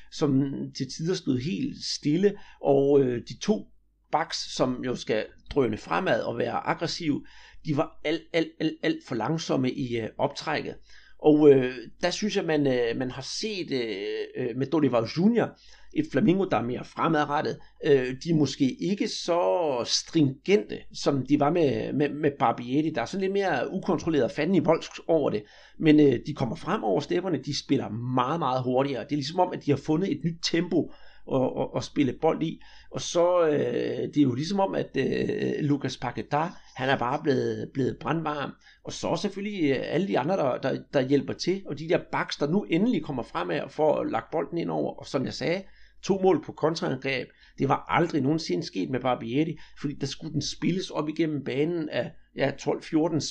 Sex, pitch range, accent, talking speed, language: male, 135-170 Hz, native, 195 wpm, Danish